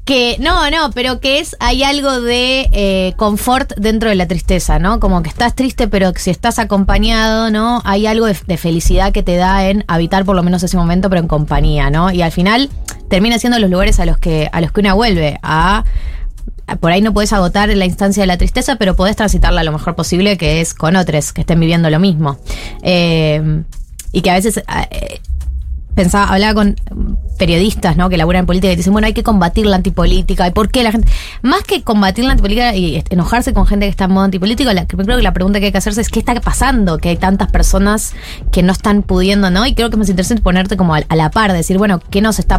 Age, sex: 20-39, female